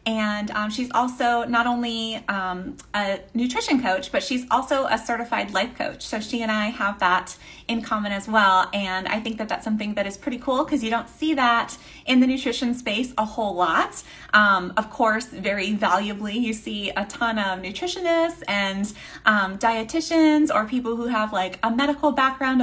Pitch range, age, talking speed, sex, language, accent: 205-255 Hz, 20-39, 190 wpm, female, English, American